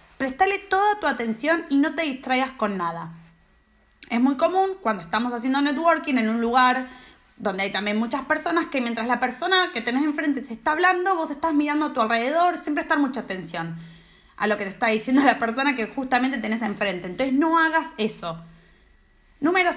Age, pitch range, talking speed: 20-39, 210-320 Hz, 190 wpm